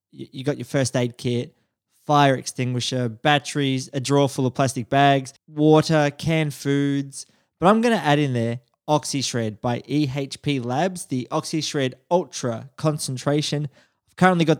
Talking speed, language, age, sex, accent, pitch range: 155 wpm, English, 20-39, male, Australian, 130-160 Hz